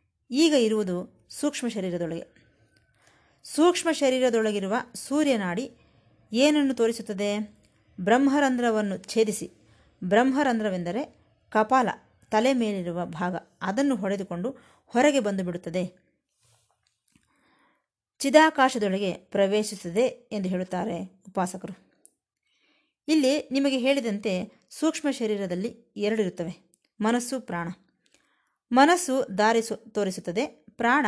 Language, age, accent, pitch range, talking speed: Kannada, 20-39, native, 190-255 Hz, 75 wpm